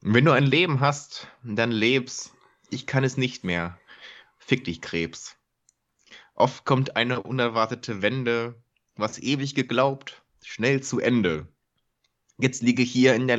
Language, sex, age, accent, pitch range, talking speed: German, male, 20-39, German, 105-130 Hz, 145 wpm